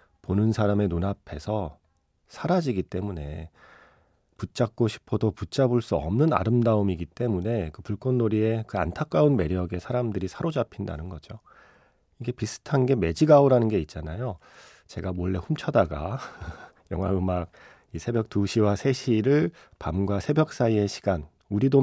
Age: 40-59